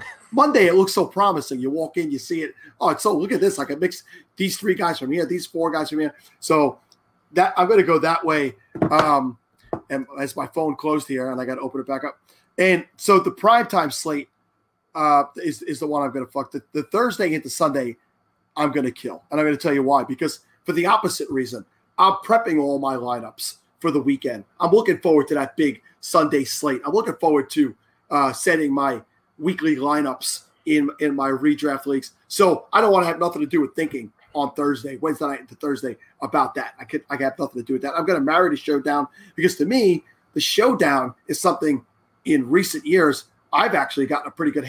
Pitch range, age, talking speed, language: 135-165 Hz, 30-49, 225 wpm, English